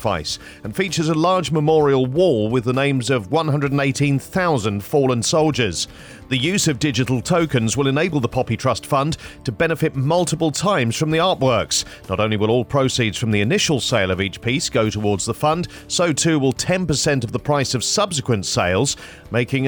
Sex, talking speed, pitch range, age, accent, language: male, 175 wpm, 120-155 Hz, 40-59, British, English